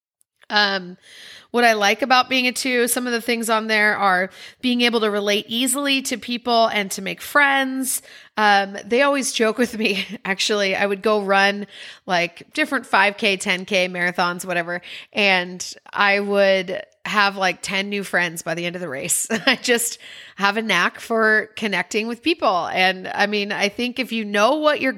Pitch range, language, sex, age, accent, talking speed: 200-245 Hz, English, female, 30-49, American, 185 wpm